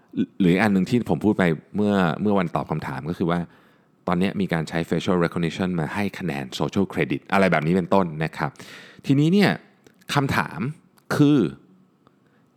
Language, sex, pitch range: Thai, male, 85-125 Hz